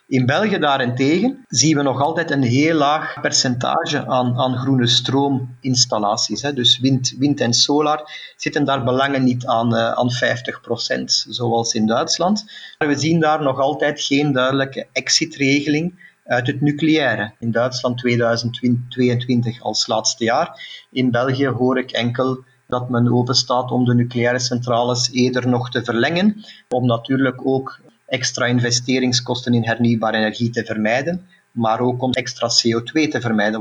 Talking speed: 145 wpm